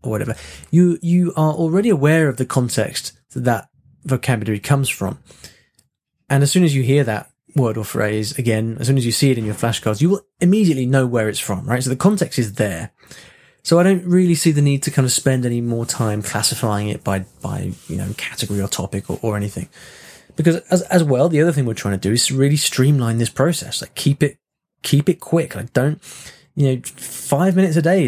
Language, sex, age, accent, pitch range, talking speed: English, male, 20-39, British, 110-155 Hz, 220 wpm